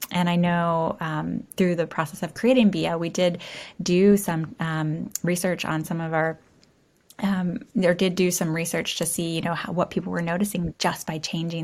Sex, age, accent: female, 10-29, American